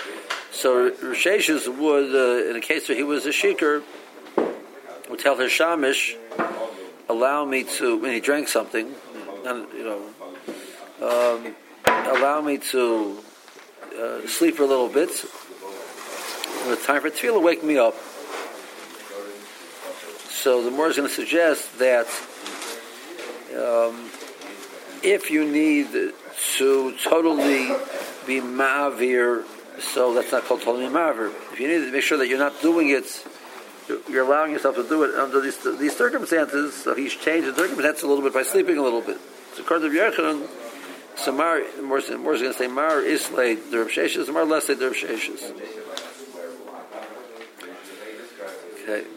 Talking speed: 145 wpm